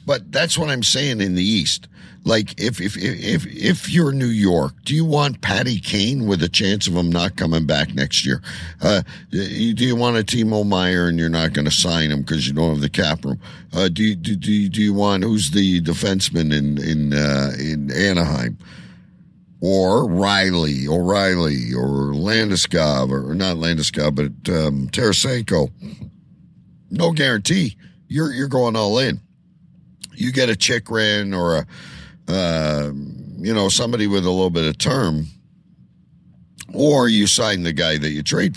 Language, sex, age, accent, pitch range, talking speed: English, male, 50-69, American, 80-120 Hz, 180 wpm